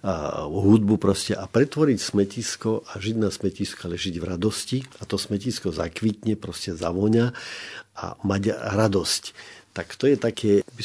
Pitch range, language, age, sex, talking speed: 95-110 Hz, Slovak, 50-69, male, 150 wpm